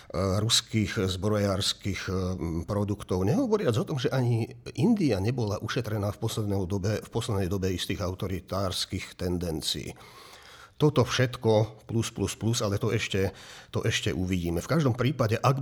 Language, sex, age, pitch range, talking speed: Slovak, male, 50-69, 90-110 Hz, 125 wpm